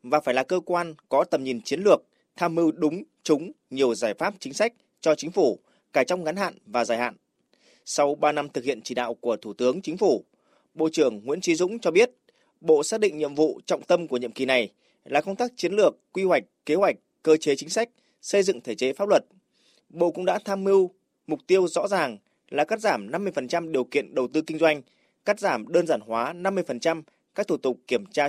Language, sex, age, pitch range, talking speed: Vietnamese, male, 20-39, 145-205 Hz, 230 wpm